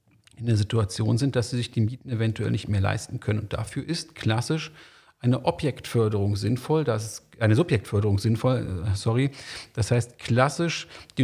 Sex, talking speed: male, 155 wpm